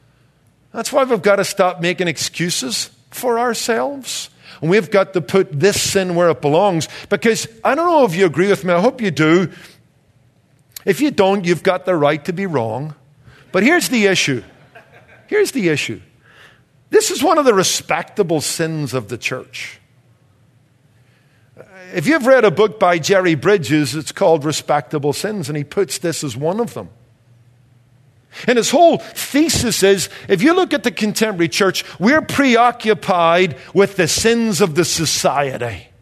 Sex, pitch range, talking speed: male, 140-200 Hz, 165 wpm